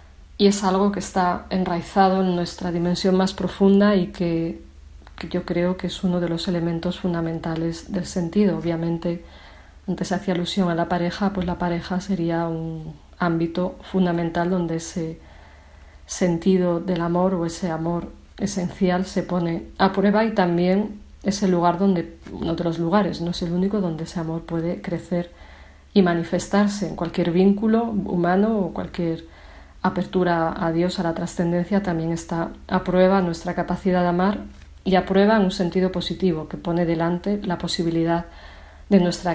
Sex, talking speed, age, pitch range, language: female, 165 wpm, 40-59, 170-185 Hz, Spanish